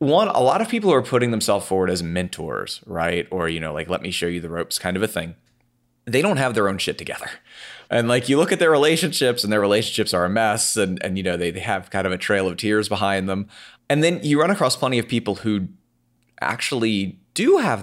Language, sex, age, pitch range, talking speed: English, male, 30-49, 95-125 Hz, 250 wpm